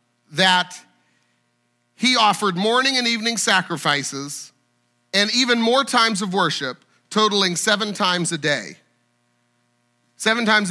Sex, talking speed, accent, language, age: male, 110 wpm, American, English, 40-59